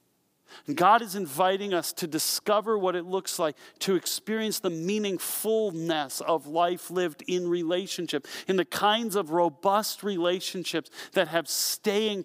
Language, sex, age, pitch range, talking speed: English, male, 40-59, 120-180 Hz, 135 wpm